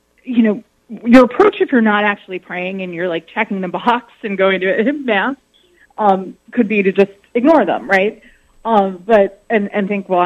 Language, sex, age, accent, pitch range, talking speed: English, female, 30-49, American, 190-255 Hz, 200 wpm